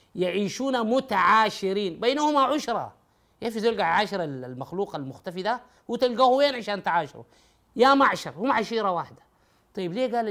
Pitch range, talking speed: 160-230 Hz, 135 wpm